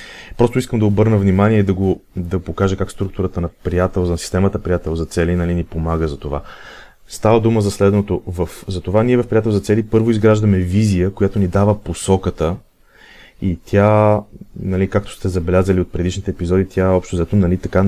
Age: 30-49